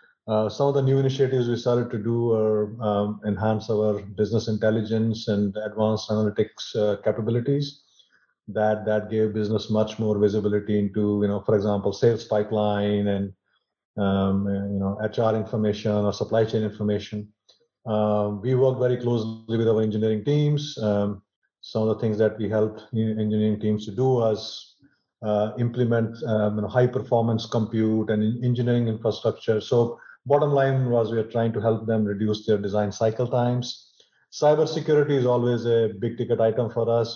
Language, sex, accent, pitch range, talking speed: English, male, Indian, 105-120 Hz, 165 wpm